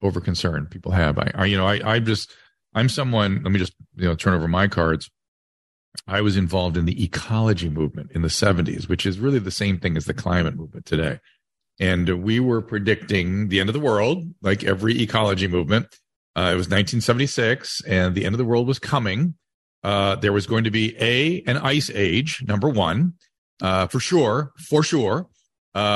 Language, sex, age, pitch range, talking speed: English, male, 40-59, 95-130 Hz, 200 wpm